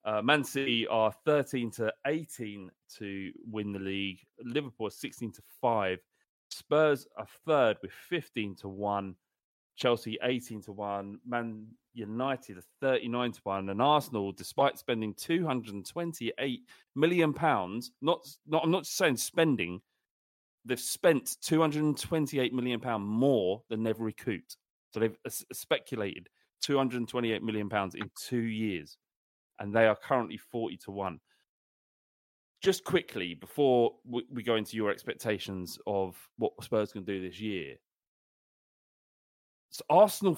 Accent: British